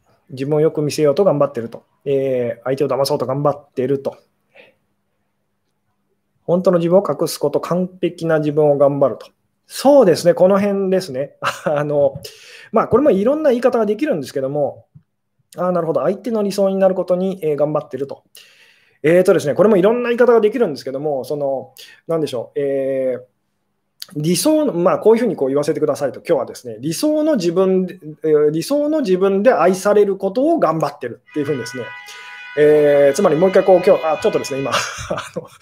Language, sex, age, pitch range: Japanese, male, 20-39, 145-195 Hz